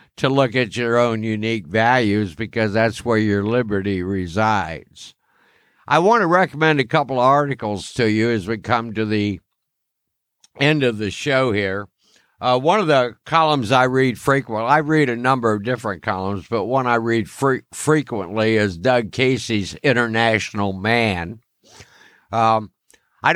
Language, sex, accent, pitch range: English, male, American, 110-140 Hz